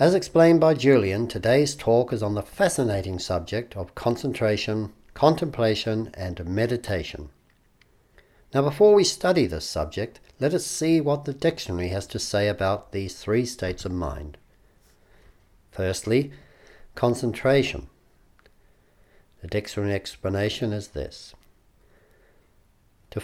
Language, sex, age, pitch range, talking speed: English, male, 60-79, 95-140 Hz, 115 wpm